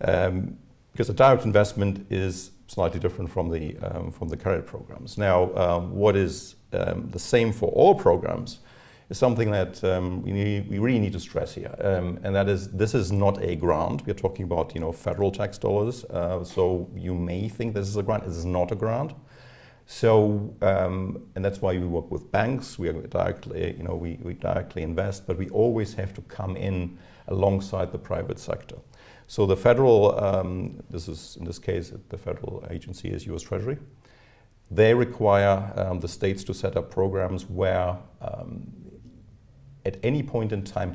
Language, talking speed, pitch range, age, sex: English, 190 wpm, 95-115 Hz, 50-69, male